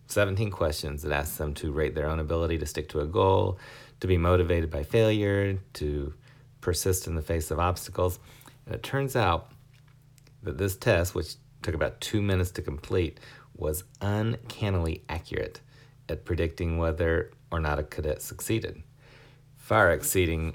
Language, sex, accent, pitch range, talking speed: English, male, American, 80-115 Hz, 160 wpm